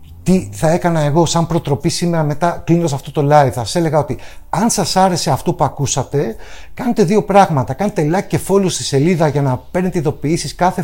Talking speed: 205 wpm